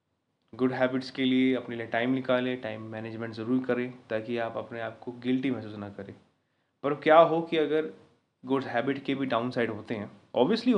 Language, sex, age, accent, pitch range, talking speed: Hindi, male, 20-39, native, 115-140 Hz, 190 wpm